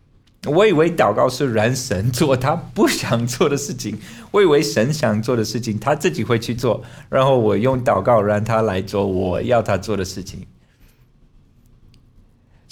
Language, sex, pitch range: Chinese, male, 95-125 Hz